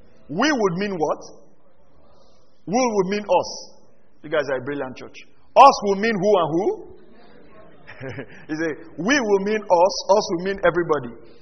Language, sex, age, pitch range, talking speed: English, male, 40-59, 180-295 Hz, 160 wpm